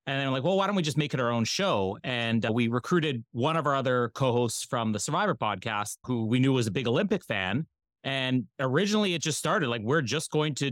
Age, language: 30-49, English